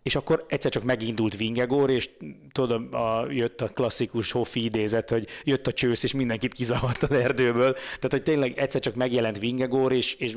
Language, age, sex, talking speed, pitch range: Hungarian, 30-49, male, 185 wpm, 110-135 Hz